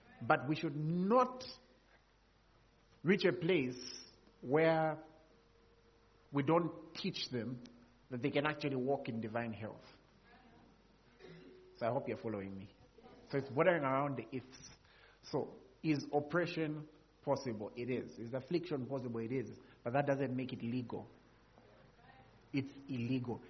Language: English